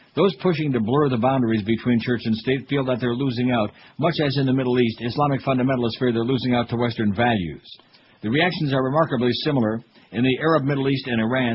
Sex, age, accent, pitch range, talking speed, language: male, 60-79, American, 115-140 Hz, 220 wpm, English